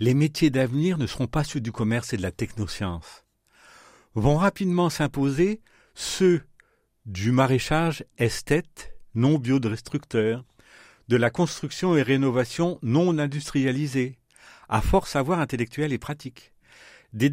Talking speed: 130 wpm